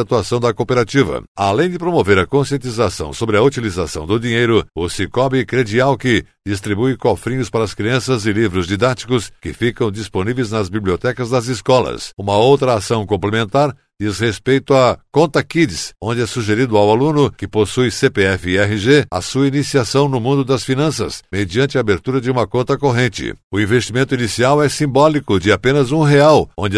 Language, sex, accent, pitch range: Portuguese, male, Brazilian, 105-135 Hz